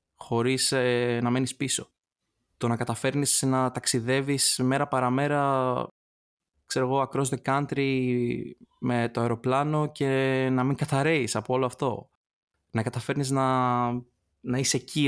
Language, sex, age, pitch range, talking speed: Greek, male, 20-39, 110-135 Hz, 130 wpm